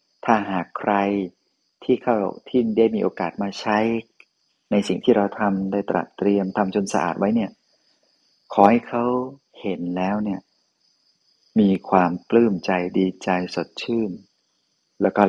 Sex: male